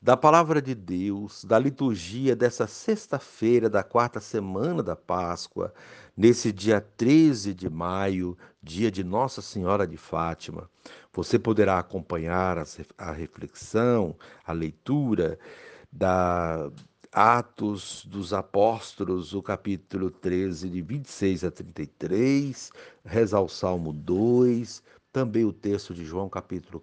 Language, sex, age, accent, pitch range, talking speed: Portuguese, male, 60-79, Brazilian, 95-130 Hz, 120 wpm